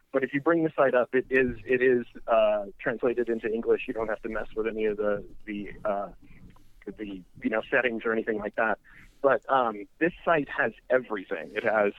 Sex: male